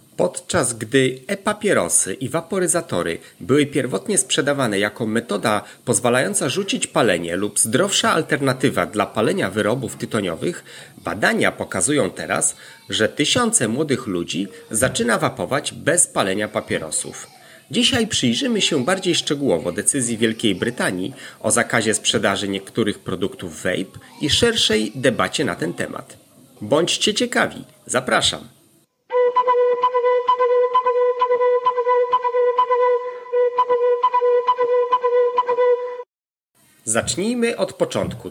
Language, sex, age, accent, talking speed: Polish, male, 30-49, native, 90 wpm